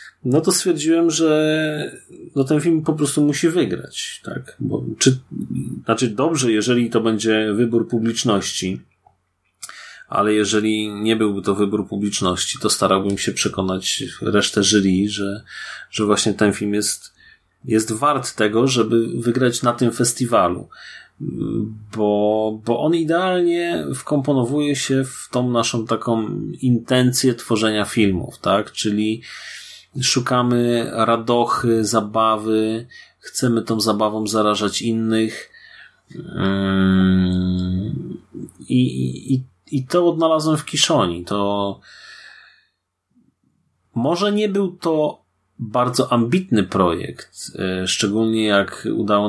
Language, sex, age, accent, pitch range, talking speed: Polish, male, 30-49, native, 105-130 Hz, 105 wpm